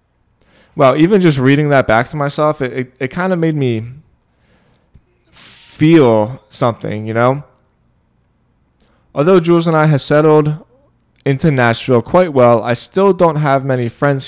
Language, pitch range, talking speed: English, 110-145 Hz, 145 wpm